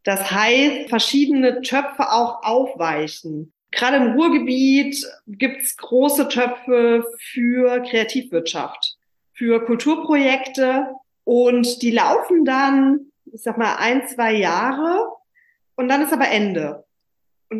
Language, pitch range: German, 230-275 Hz